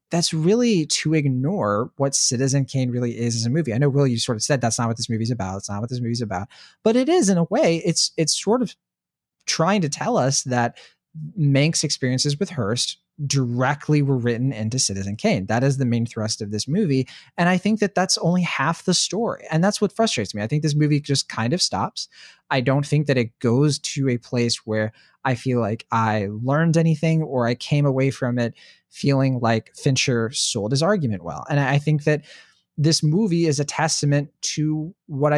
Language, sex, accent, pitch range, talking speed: English, male, American, 120-155 Hz, 215 wpm